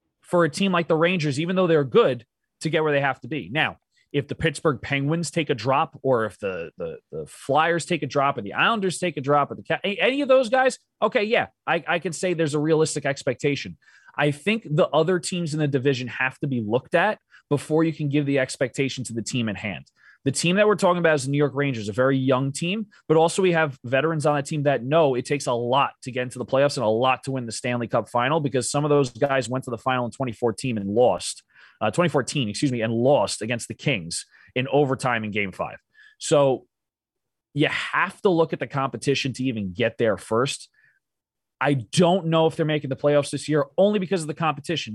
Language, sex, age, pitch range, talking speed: English, male, 20-39, 120-160 Hz, 240 wpm